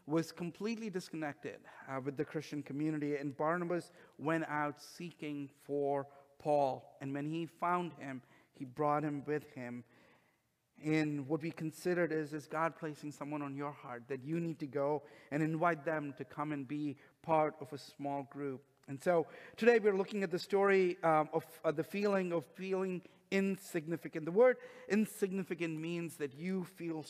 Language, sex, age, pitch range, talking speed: English, male, 50-69, 150-185 Hz, 170 wpm